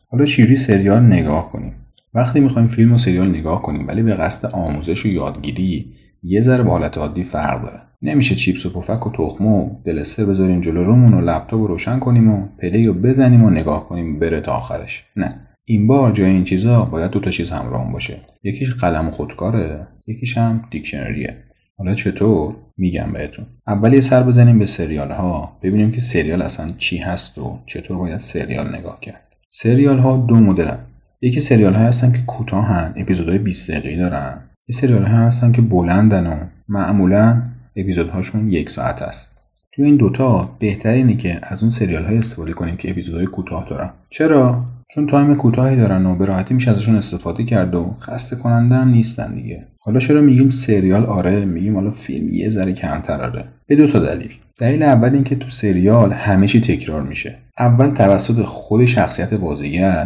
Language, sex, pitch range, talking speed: Persian, male, 90-120 Hz, 175 wpm